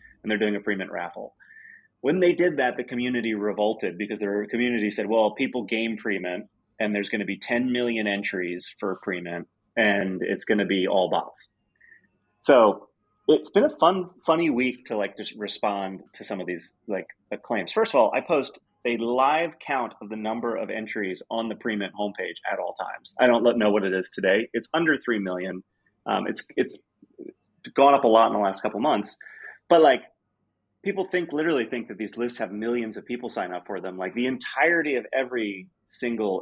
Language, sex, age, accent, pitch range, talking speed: English, male, 30-49, American, 100-125 Hz, 200 wpm